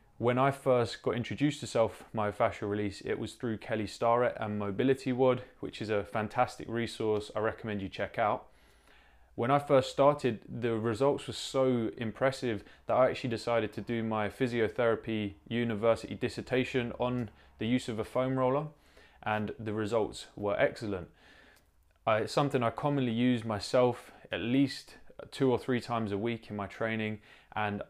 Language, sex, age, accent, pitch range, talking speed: English, male, 20-39, British, 110-125 Hz, 165 wpm